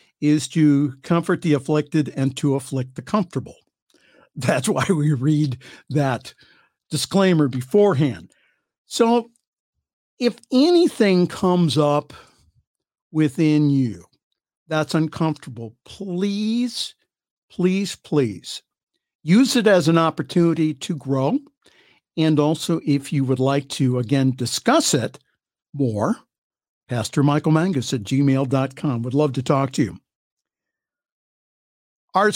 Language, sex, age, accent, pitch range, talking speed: English, male, 60-79, American, 140-180 Hz, 110 wpm